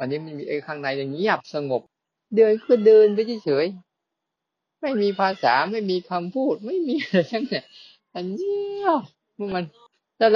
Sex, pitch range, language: male, 170-235 Hz, Thai